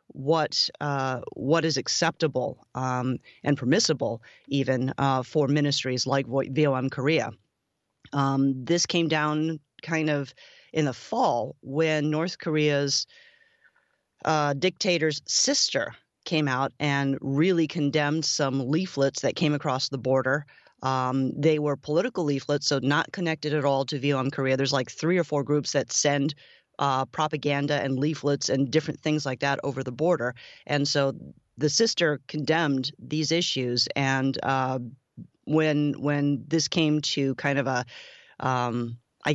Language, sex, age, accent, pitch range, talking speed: English, female, 30-49, American, 135-155 Hz, 145 wpm